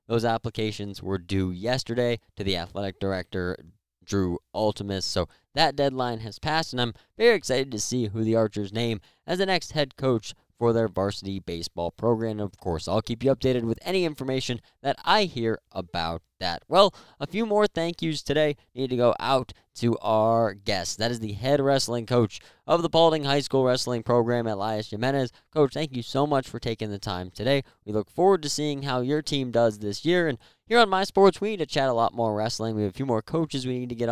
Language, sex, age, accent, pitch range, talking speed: English, male, 20-39, American, 105-135 Hz, 215 wpm